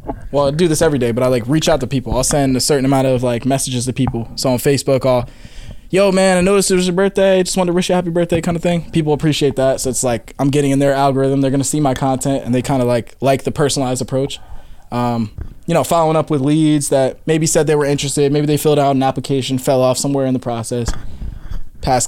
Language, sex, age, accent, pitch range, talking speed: English, male, 20-39, American, 125-145 Hz, 265 wpm